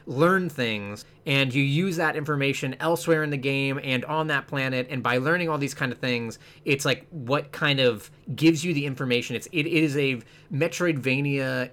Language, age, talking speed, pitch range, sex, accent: English, 30-49, 195 wpm, 115-150 Hz, male, American